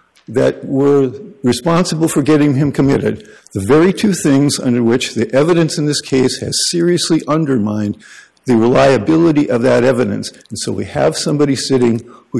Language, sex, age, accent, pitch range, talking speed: English, male, 50-69, American, 110-145 Hz, 160 wpm